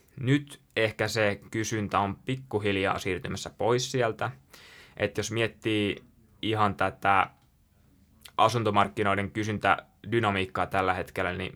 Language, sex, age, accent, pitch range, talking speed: Finnish, male, 20-39, native, 95-110 Hz, 100 wpm